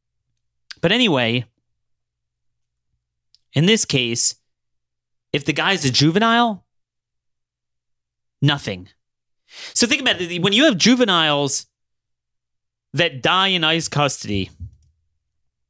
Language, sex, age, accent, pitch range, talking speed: English, male, 30-49, American, 85-145 Hz, 90 wpm